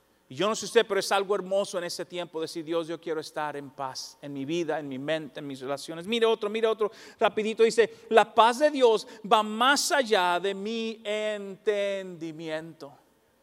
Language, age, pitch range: English, 40-59, 160-255 Hz